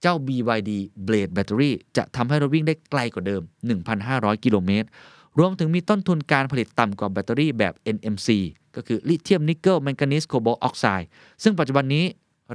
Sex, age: male, 20-39